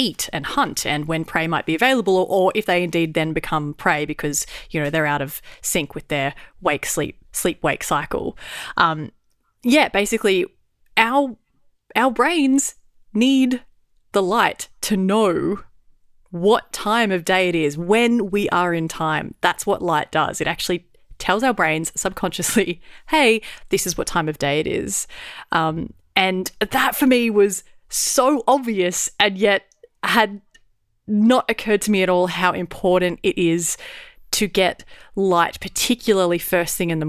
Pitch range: 170-210 Hz